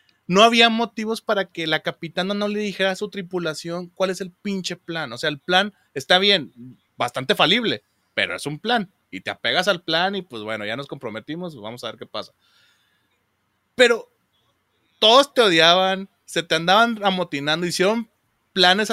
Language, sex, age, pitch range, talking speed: Spanish, male, 30-49, 140-195 Hz, 180 wpm